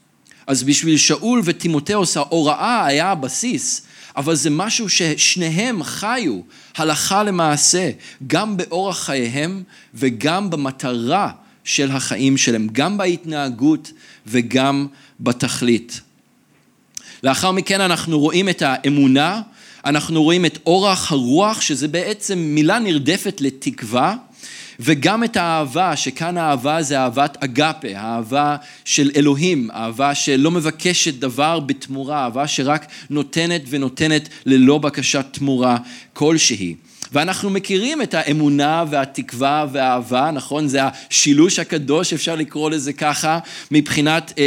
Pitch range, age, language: 140-175 Hz, 40-59, Hebrew